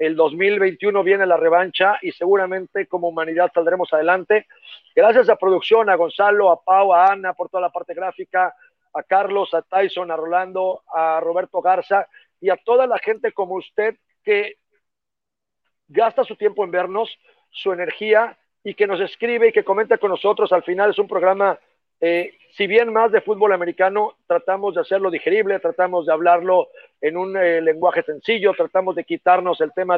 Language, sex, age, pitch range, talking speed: Spanish, male, 50-69, 180-215 Hz, 175 wpm